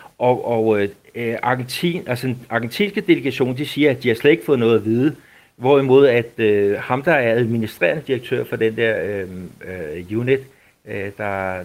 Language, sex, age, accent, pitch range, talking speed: Danish, male, 60-79, native, 110-130 Hz, 175 wpm